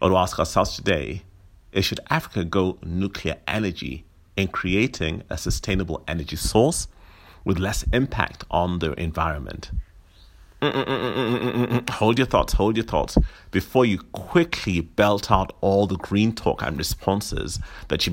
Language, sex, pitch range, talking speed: English, male, 80-105 Hz, 165 wpm